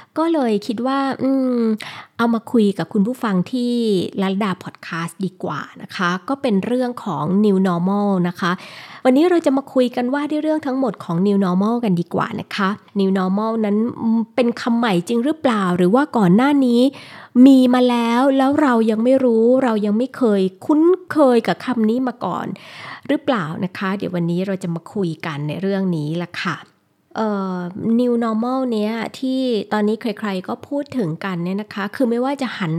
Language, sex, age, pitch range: Thai, female, 20-39, 190-250 Hz